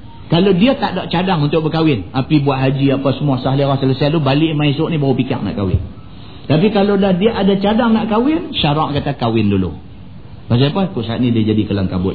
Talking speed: 205 wpm